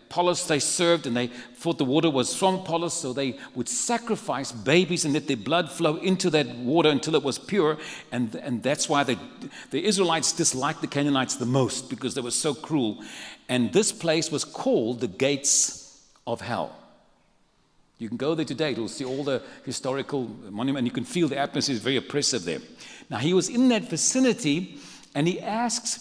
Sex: male